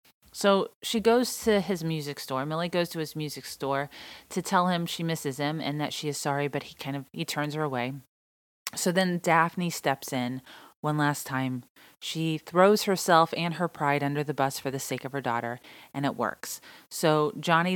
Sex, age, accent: female, 30-49, American